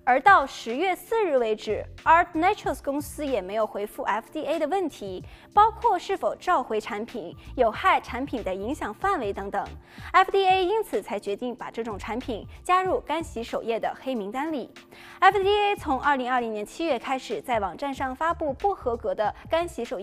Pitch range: 225-365 Hz